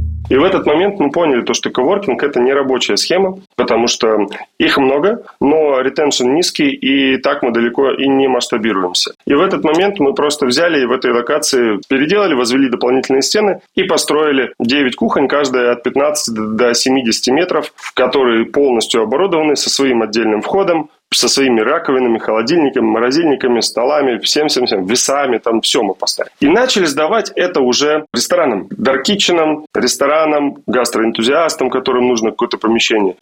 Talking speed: 155 wpm